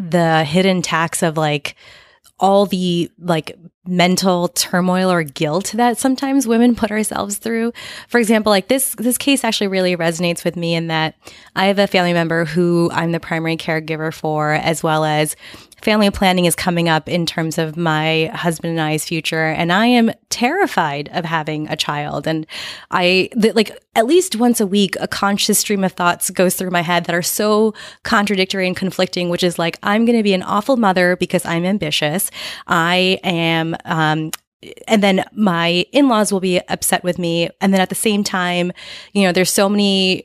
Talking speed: 190 wpm